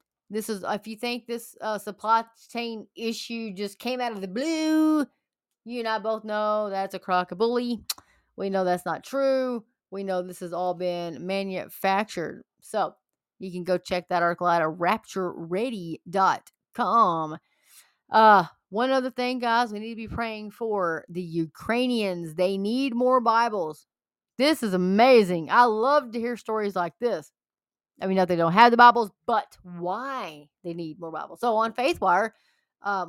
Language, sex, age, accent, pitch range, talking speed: English, female, 30-49, American, 185-235 Hz, 165 wpm